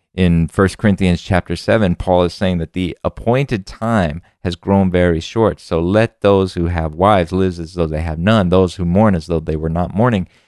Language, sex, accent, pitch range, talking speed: English, male, American, 85-100 Hz, 210 wpm